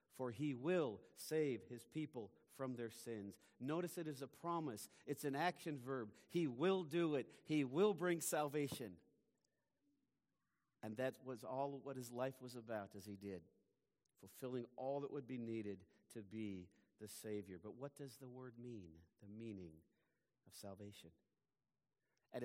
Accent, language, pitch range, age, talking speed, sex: American, English, 115-150 Hz, 50-69, 160 wpm, male